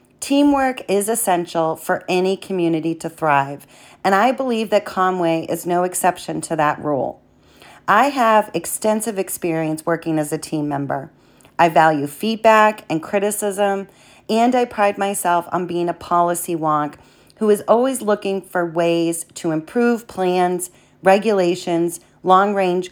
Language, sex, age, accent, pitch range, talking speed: English, female, 40-59, American, 165-200 Hz, 140 wpm